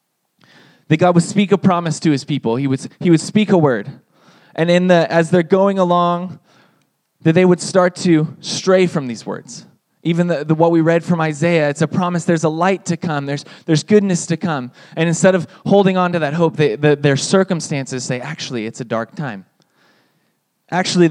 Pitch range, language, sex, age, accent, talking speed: 145-180 Hz, English, male, 20-39, American, 205 wpm